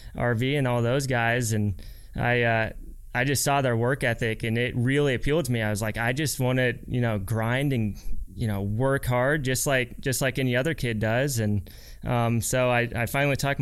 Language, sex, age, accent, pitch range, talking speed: English, male, 20-39, American, 115-140 Hz, 225 wpm